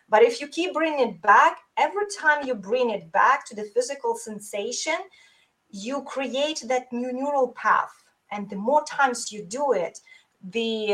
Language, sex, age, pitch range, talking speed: English, female, 20-39, 205-275 Hz, 170 wpm